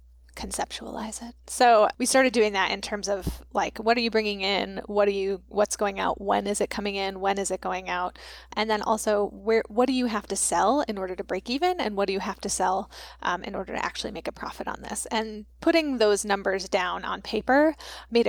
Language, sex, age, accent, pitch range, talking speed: English, female, 10-29, American, 195-235 Hz, 235 wpm